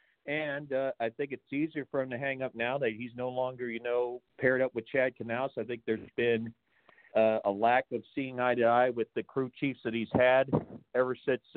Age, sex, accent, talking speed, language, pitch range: 50-69, male, American, 230 wpm, English, 115-140 Hz